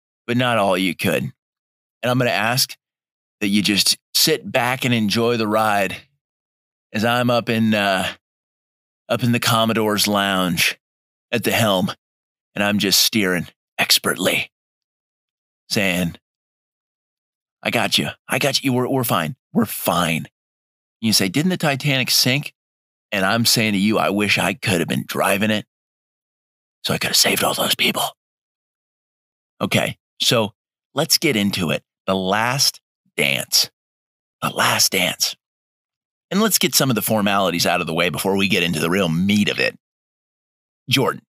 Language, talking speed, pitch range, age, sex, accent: English, 160 wpm, 95-125 Hz, 30-49, male, American